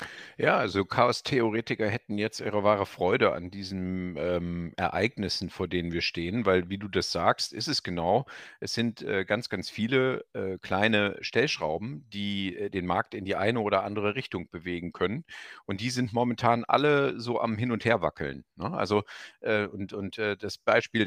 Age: 50-69